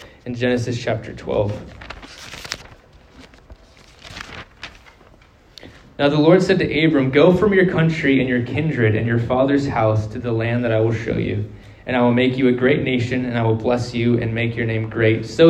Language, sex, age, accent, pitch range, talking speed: English, male, 20-39, American, 110-135 Hz, 185 wpm